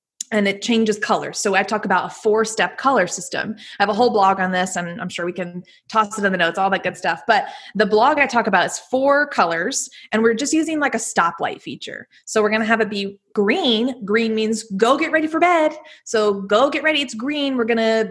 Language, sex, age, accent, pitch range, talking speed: English, female, 20-39, American, 195-255 Hz, 240 wpm